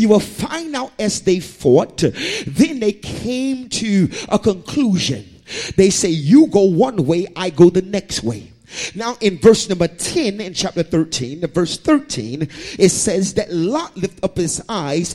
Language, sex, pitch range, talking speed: English, male, 180-235 Hz, 170 wpm